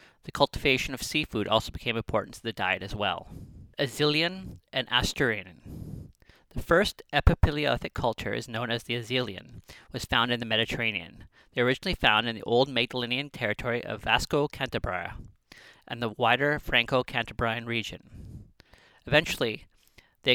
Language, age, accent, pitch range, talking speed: English, 40-59, American, 110-130 Hz, 140 wpm